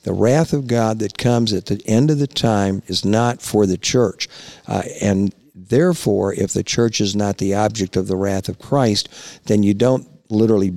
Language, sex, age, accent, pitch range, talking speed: English, male, 50-69, American, 100-130 Hz, 200 wpm